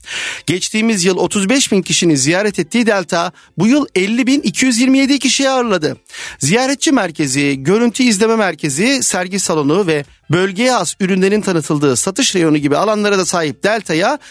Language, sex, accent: Turkish, male, native